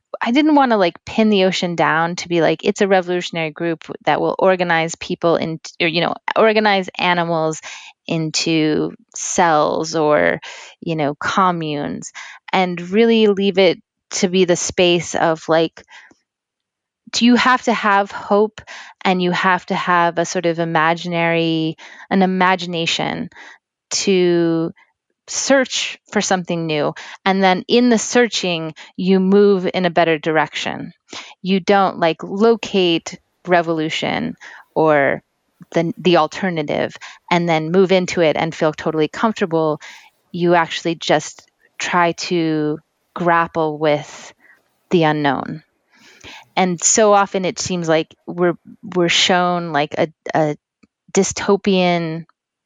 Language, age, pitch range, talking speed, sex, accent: English, 20-39, 165-195 Hz, 130 wpm, female, American